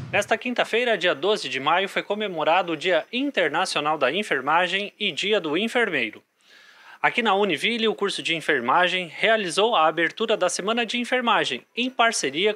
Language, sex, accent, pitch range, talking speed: Portuguese, male, Brazilian, 185-240 Hz, 160 wpm